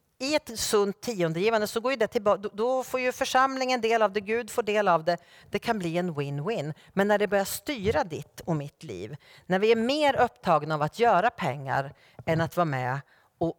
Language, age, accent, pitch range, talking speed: Swedish, 40-59, Norwegian, 145-220 Hz, 210 wpm